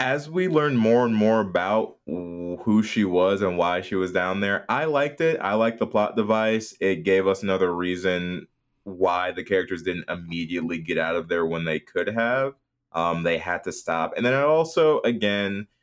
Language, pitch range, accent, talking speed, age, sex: English, 85-120 Hz, American, 195 wpm, 20-39, male